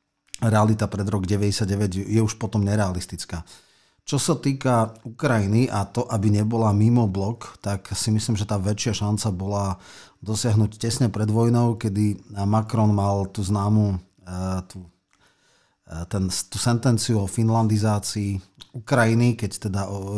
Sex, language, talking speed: male, Slovak, 130 wpm